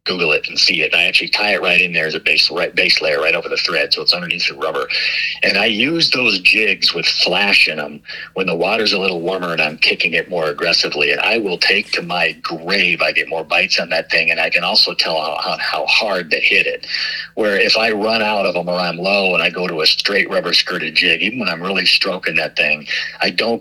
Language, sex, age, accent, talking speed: English, male, 50-69, American, 260 wpm